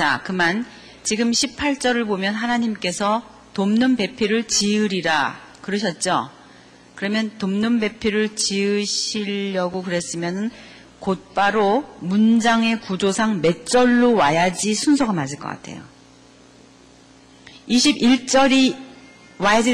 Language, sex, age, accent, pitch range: Korean, female, 40-59, native, 185-240 Hz